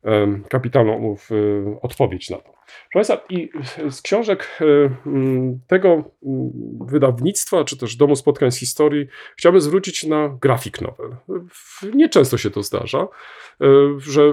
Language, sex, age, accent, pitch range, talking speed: Polish, male, 40-59, native, 125-150 Hz, 115 wpm